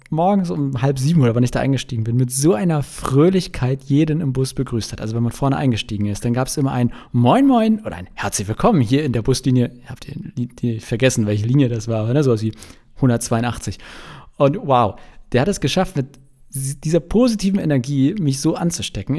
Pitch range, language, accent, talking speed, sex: 115-145 Hz, German, German, 215 wpm, male